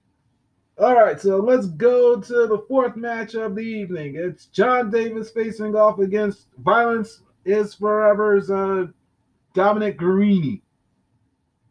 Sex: male